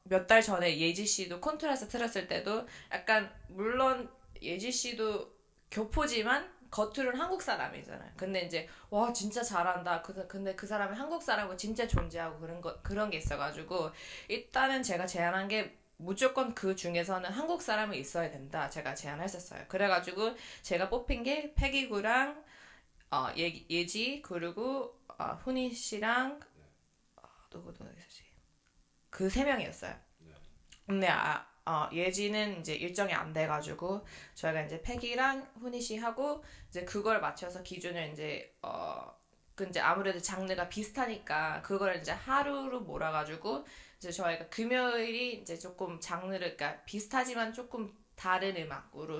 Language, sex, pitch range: Korean, female, 175-245 Hz